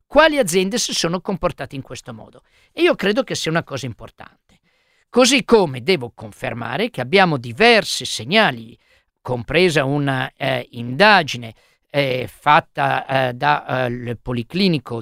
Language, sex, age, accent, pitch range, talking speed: Italian, male, 50-69, native, 140-235 Hz, 130 wpm